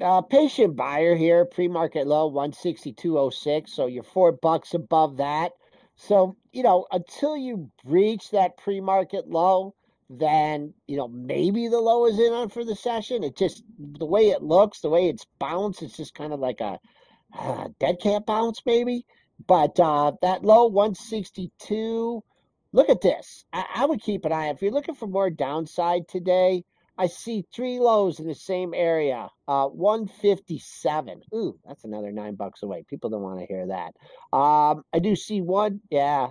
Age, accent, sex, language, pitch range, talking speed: 50-69, American, male, English, 155-215 Hz, 170 wpm